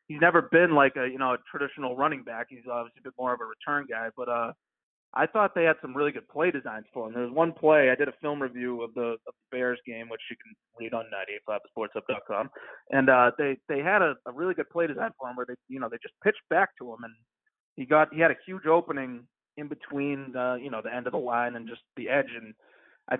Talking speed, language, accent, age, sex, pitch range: 275 wpm, English, American, 30-49, male, 125-155 Hz